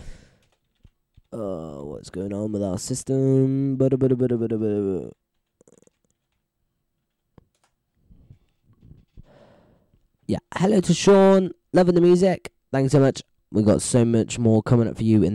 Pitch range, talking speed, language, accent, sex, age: 100-130 Hz, 105 wpm, English, British, male, 10-29